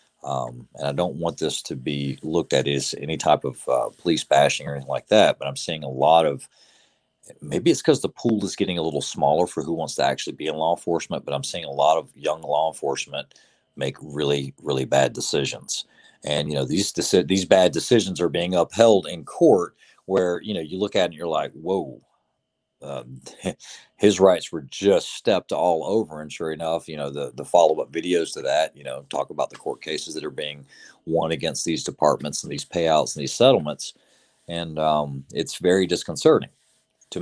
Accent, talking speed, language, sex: American, 210 wpm, English, male